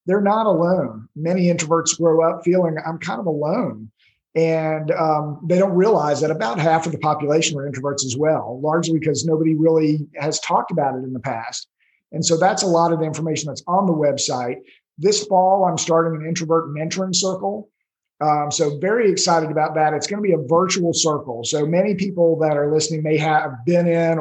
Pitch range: 150-170 Hz